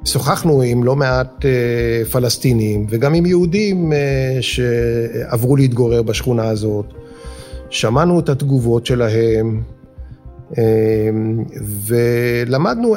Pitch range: 125-160 Hz